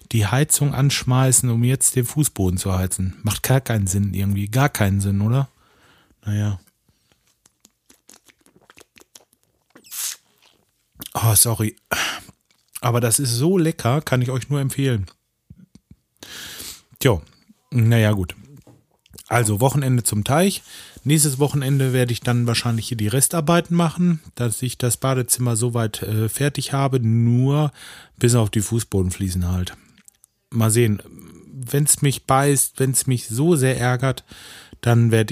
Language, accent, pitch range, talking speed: German, German, 105-130 Hz, 125 wpm